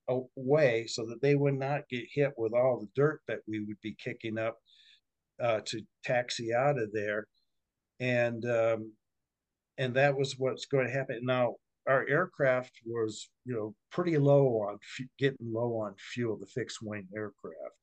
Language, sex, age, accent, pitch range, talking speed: English, male, 50-69, American, 120-150 Hz, 170 wpm